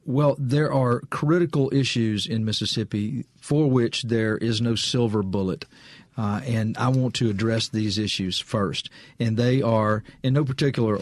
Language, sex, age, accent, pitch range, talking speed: English, male, 40-59, American, 105-125 Hz, 160 wpm